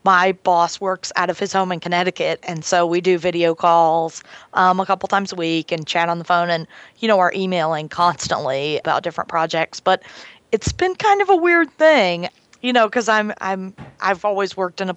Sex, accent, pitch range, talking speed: female, American, 170-195 Hz, 205 wpm